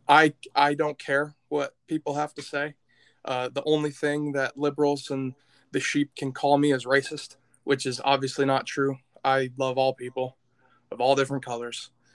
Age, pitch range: 20-39, 130-145 Hz